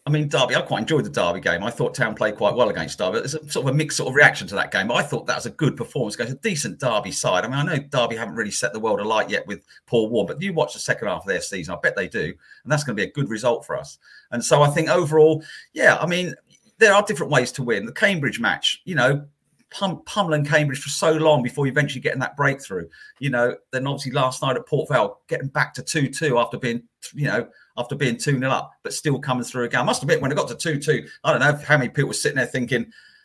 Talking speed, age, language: 275 wpm, 40-59, English